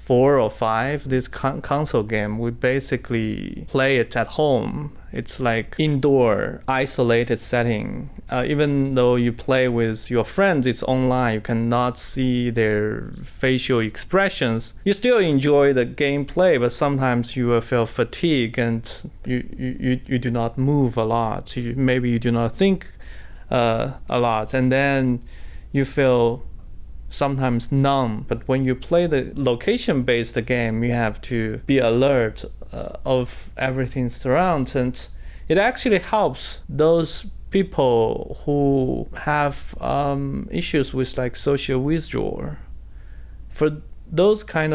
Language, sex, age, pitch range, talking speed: English, male, 20-39, 120-145 Hz, 140 wpm